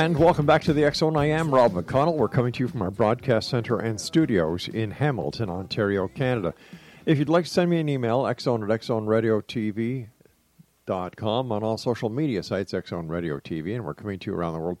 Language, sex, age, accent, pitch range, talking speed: English, male, 50-69, American, 100-130 Hz, 205 wpm